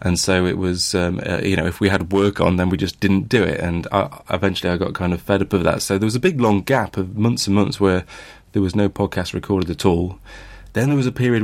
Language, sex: English, male